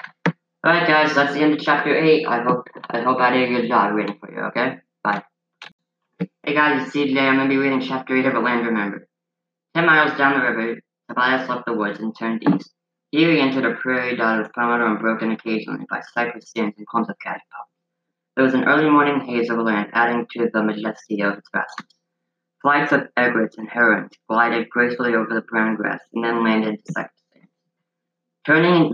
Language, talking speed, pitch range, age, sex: English, 205 wpm, 110-135 Hz, 20-39, female